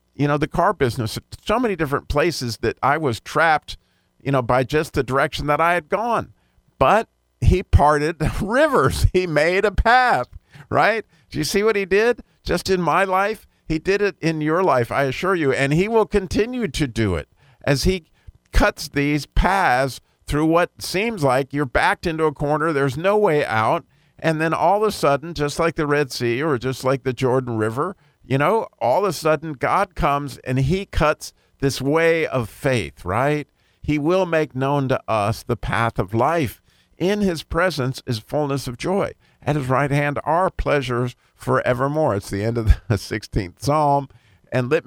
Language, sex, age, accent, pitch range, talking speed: English, male, 50-69, American, 125-165 Hz, 190 wpm